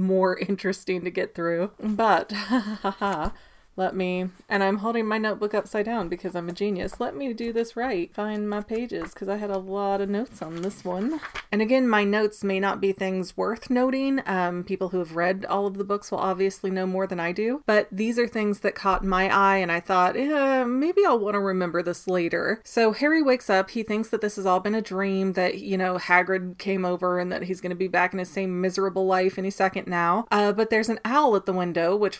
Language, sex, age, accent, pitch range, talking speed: English, female, 30-49, American, 185-215 Hz, 235 wpm